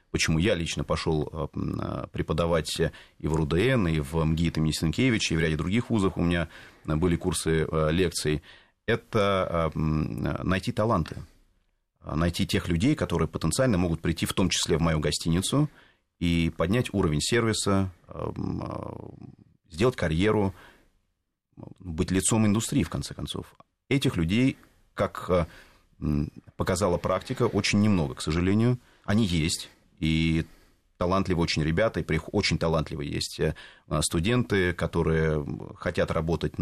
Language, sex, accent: Russian, male, native